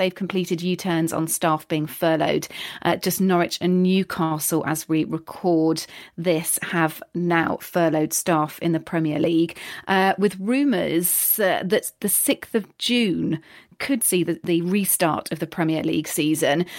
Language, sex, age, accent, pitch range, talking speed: English, female, 40-59, British, 170-210 Hz, 150 wpm